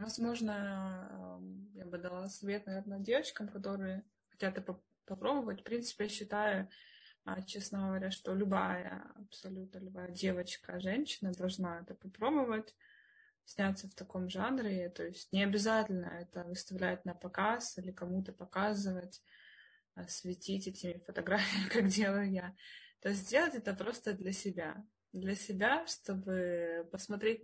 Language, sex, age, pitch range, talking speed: Russian, female, 20-39, 180-205 Hz, 125 wpm